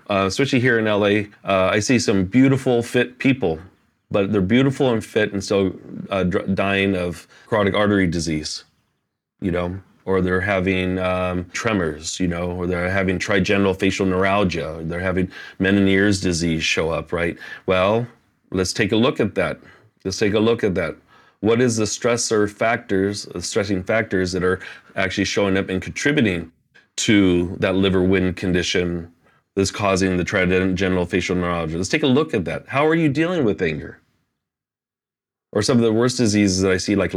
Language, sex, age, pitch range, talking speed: English, male, 30-49, 90-105 Hz, 180 wpm